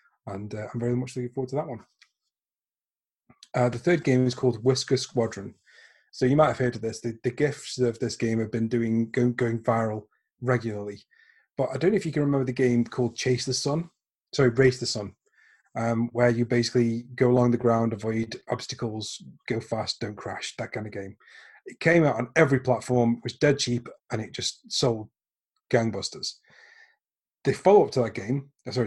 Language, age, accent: English, 30-49, British